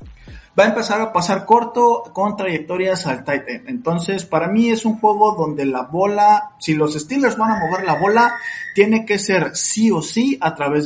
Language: Spanish